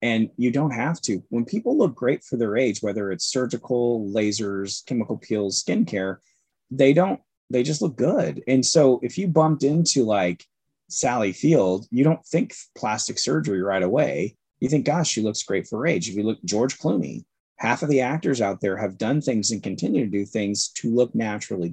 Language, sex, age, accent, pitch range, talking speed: English, male, 30-49, American, 105-145 Hz, 200 wpm